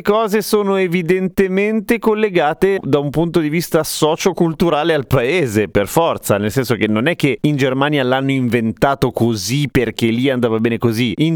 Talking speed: 165 wpm